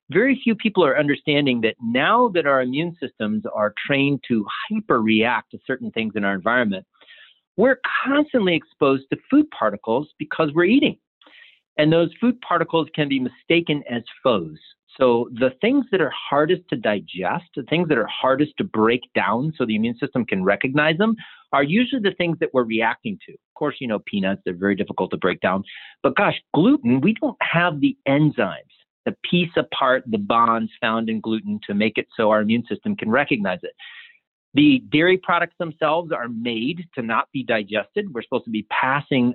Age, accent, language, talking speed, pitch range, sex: 40-59, American, English, 185 wpm, 115-175 Hz, male